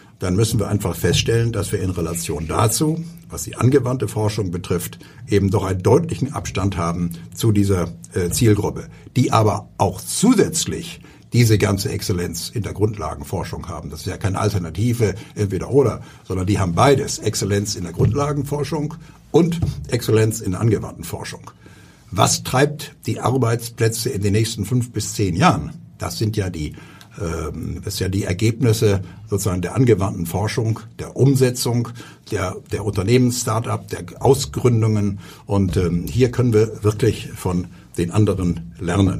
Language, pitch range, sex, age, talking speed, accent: German, 100-125 Hz, male, 60-79, 150 wpm, German